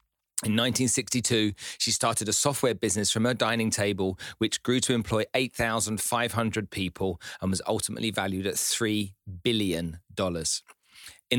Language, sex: English, male